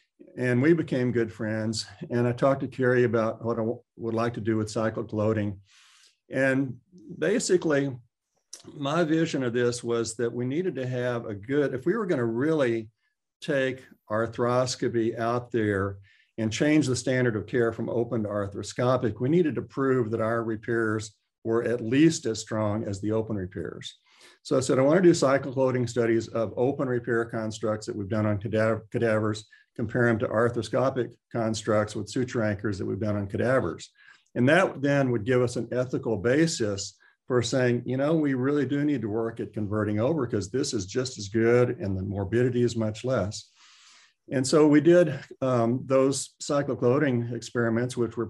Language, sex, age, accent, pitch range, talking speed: English, male, 50-69, American, 110-130 Hz, 180 wpm